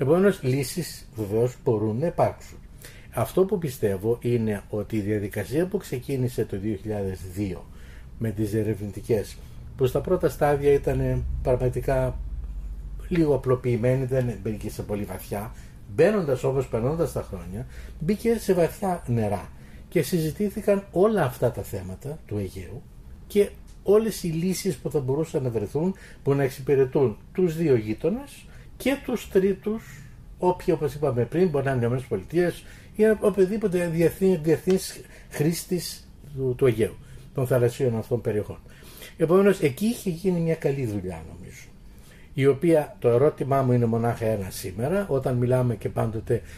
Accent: native